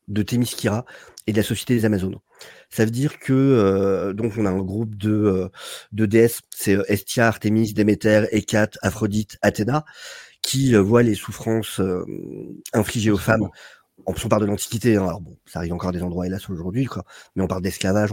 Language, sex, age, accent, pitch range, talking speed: French, male, 40-59, French, 95-125 Hz, 195 wpm